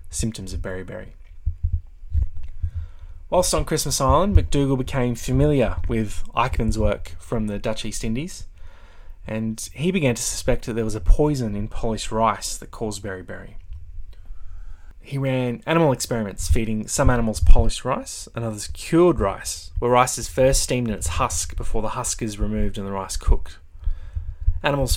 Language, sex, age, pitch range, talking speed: English, male, 20-39, 80-120 Hz, 155 wpm